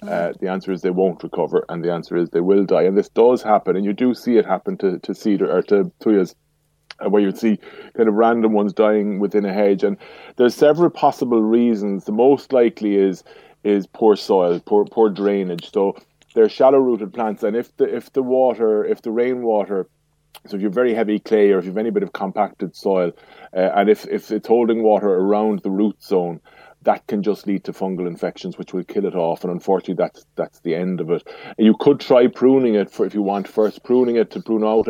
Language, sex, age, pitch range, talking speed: English, male, 30-49, 95-115 Hz, 225 wpm